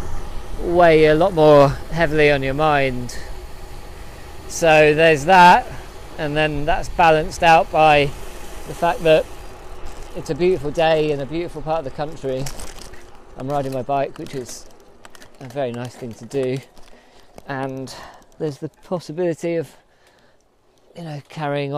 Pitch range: 125-155 Hz